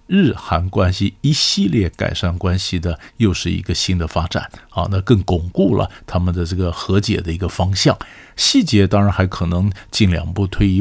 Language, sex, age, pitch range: Chinese, male, 50-69, 95-145 Hz